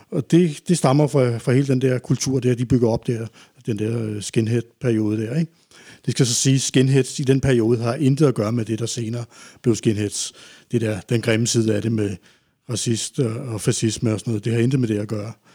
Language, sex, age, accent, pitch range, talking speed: Danish, male, 60-79, native, 115-145 Hz, 230 wpm